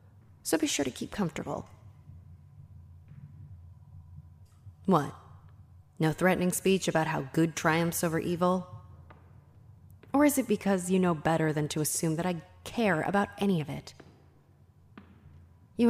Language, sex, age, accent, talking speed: English, female, 30-49, American, 130 wpm